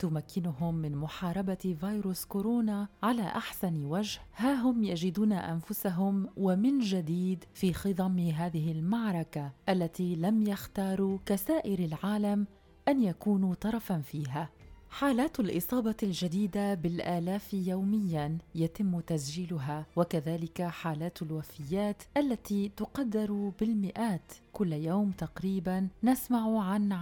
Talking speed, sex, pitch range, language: 100 wpm, female, 170-210 Hz, Arabic